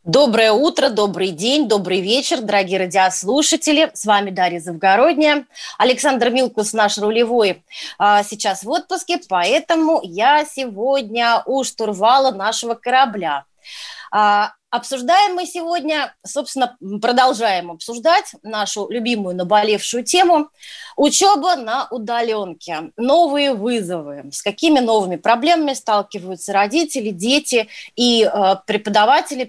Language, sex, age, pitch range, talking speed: Russian, female, 20-39, 200-275 Hz, 100 wpm